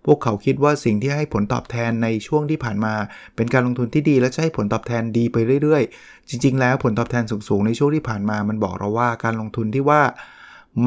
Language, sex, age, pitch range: Thai, male, 20-39, 105-130 Hz